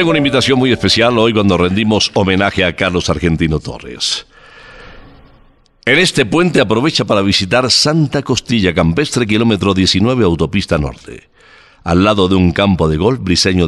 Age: 60-79